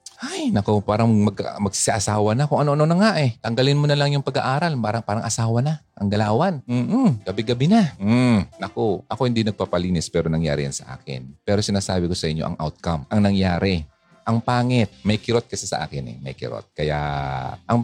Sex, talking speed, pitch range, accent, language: male, 190 wpm, 90-130 Hz, native, Filipino